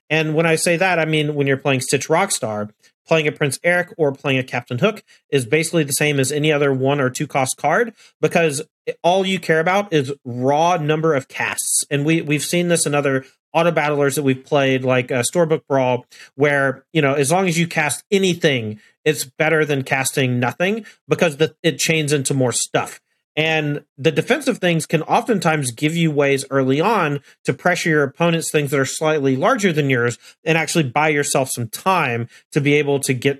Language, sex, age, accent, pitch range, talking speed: English, male, 40-59, American, 135-165 Hz, 200 wpm